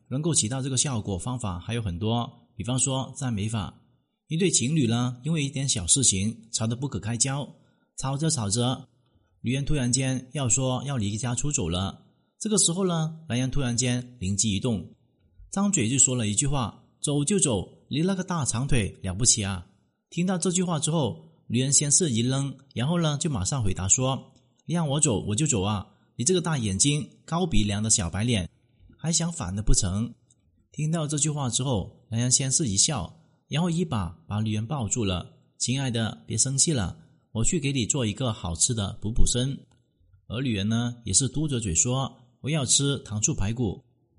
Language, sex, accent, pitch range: Chinese, male, native, 110-140 Hz